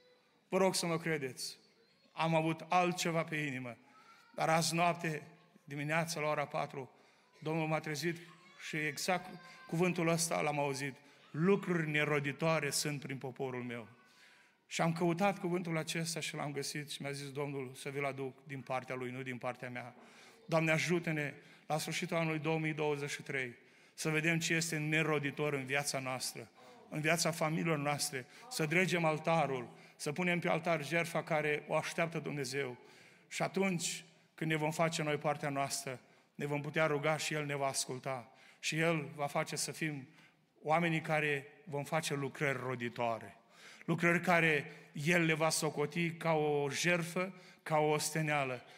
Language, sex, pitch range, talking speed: Romanian, male, 145-170 Hz, 155 wpm